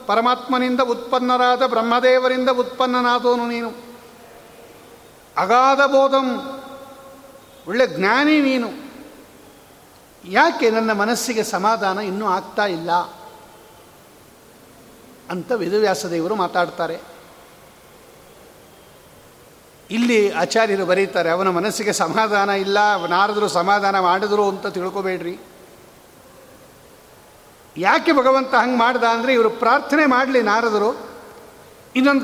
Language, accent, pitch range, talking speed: Kannada, native, 200-260 Hz, 75 wpm